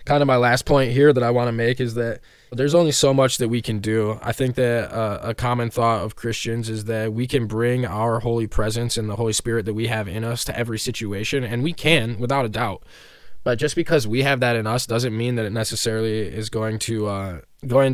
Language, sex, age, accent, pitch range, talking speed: English, male, 10-29, American, 110-125 Hz, 250 wpm